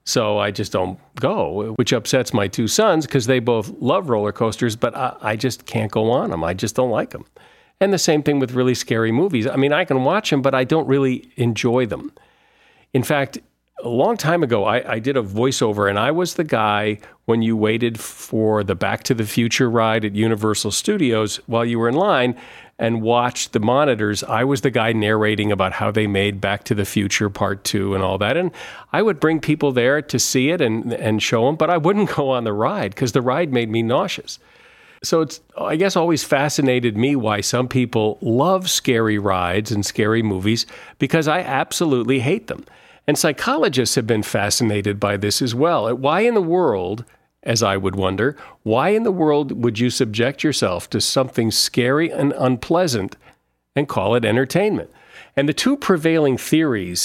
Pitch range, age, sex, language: 110-145 Hz, 50-69, male, English